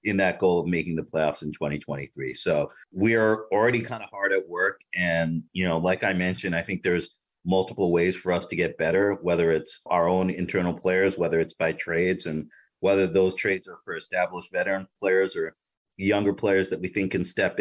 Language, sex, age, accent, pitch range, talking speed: English, male, 40-59, American, 85-100 Hz, 210 wpm